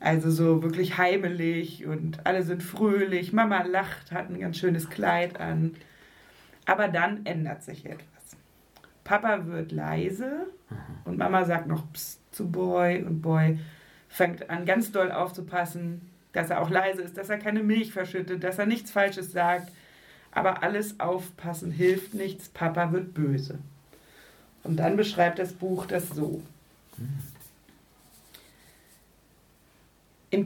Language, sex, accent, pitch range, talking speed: German, female, German, 160-190 Hz, 135 wpm